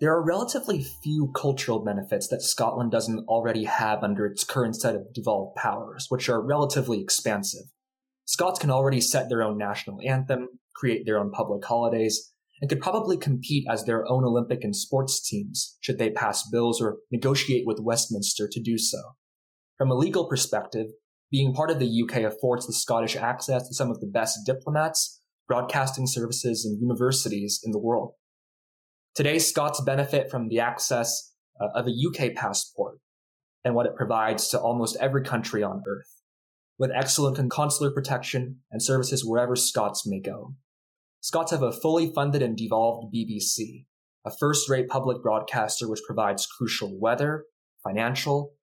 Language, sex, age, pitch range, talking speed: English, male, 20-39, 110-140 Hz, 160 wpm